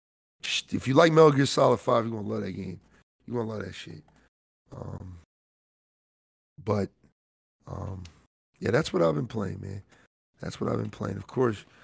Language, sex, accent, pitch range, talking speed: English, male, American, 100-145 Hz, 185 wpm